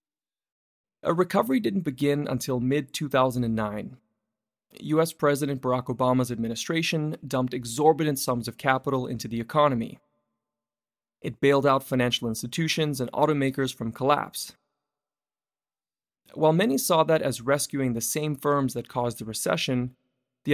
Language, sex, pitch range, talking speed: English, male, 125-150 Hz, 125 wpm